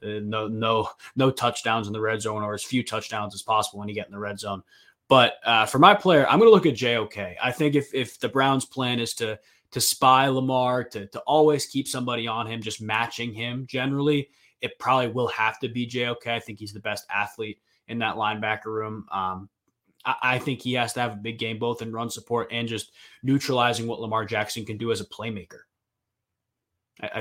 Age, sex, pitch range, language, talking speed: 20-39, male, 105-130 Hz, English, 220 wpm